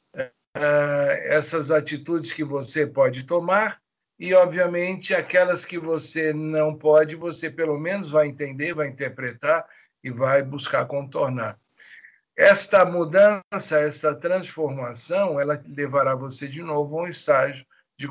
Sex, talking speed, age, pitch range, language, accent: male, 125 wpm, 60-79, 135-165 Hz, Portuguese, Brazilian